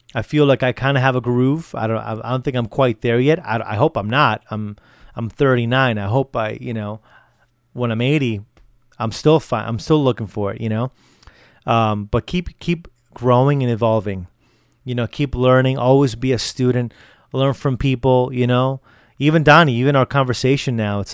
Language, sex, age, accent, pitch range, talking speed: English, male, 30-49, American, 110-130 Hz, 200 wpm